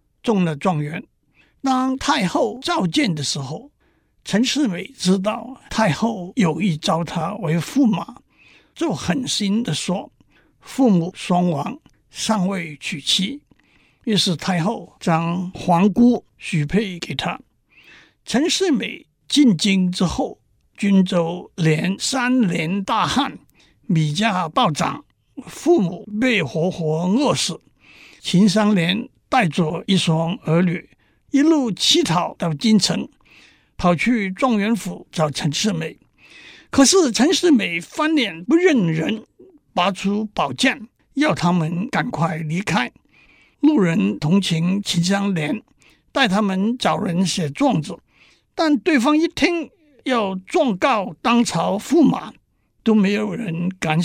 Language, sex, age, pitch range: Chinese, male, 60-79, 175-245 Hz